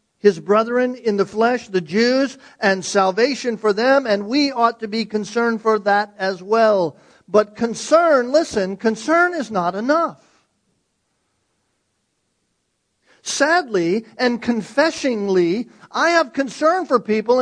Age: 50-69